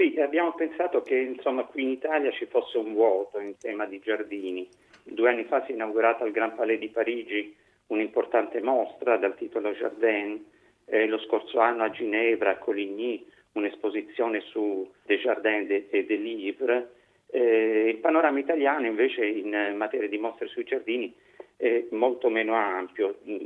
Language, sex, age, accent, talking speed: Italian, male, 50-69, native, 160 wpm